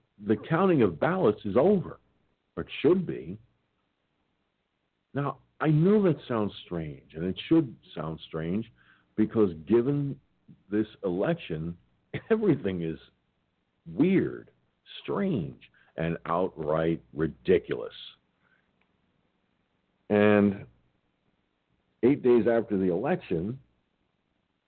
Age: 60-79